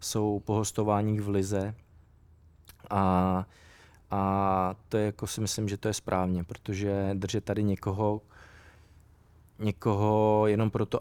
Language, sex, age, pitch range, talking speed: Czech, male, 20-39, 100-110 Hz, 120 wpm